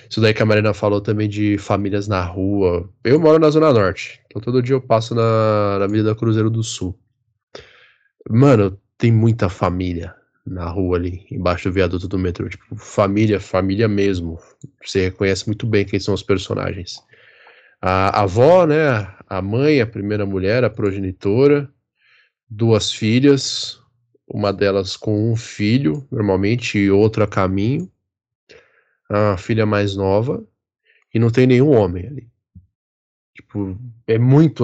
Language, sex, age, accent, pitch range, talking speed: Portuguese, male, 10-29, Brazilian, 100-125 Hz, 150 wpm